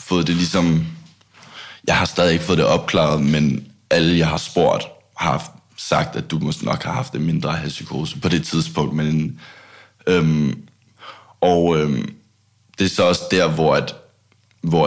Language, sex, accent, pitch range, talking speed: Danish, male, native, 75-90 Hz, 165 wpm